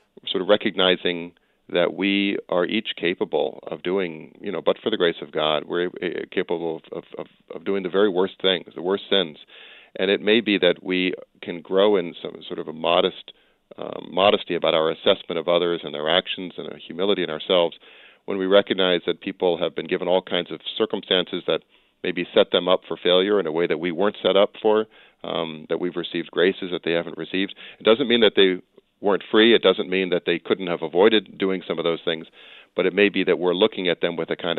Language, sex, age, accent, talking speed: English, male, 40-59, American, 225 wpm